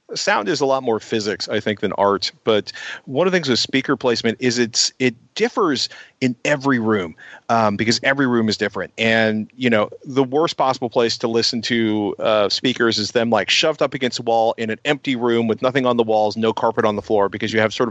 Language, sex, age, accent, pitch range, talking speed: English, male, 40-59, American, 110-135 Hz, 230 wpm